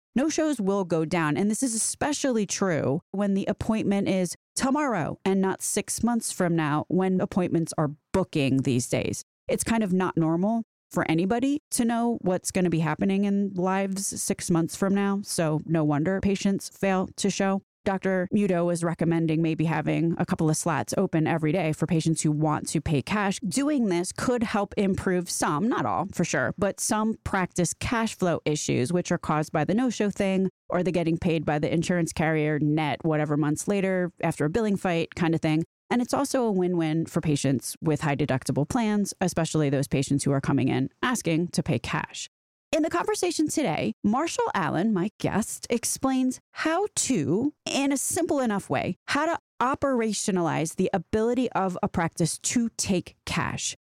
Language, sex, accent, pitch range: English, female, American, 160-210 Hz